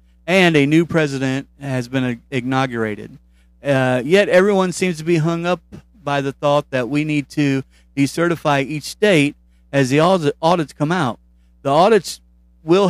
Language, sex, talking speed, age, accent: English, male, 155 wpm, 40-59, American